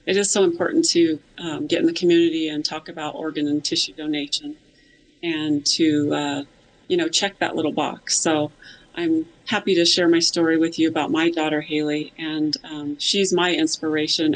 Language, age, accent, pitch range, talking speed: English, 30-49, American, 155-220 Hz, 185 wpm